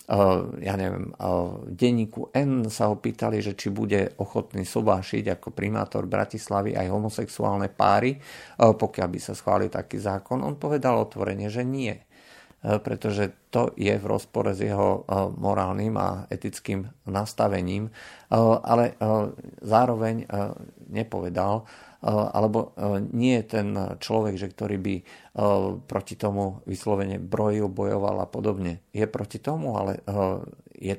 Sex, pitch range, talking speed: male, 95-115 Hz, 120 wpm